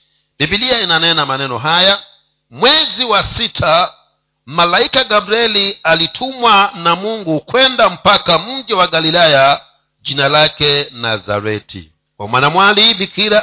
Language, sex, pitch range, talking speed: Swahili, male, 130-185 Hz, 105 wpm